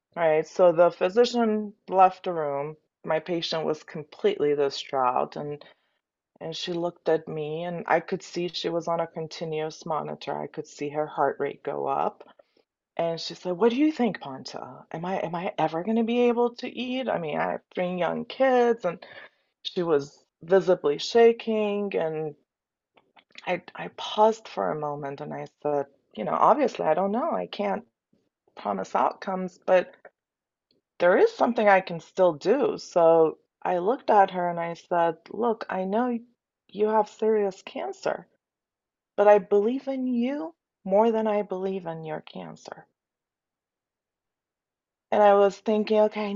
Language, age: English, 30-49